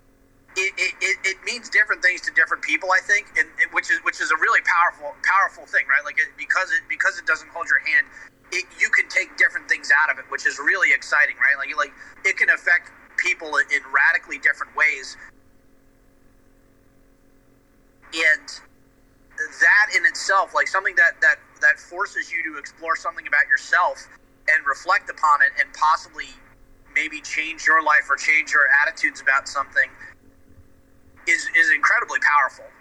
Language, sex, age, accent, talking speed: English, male, 30-49, American, 170 wpm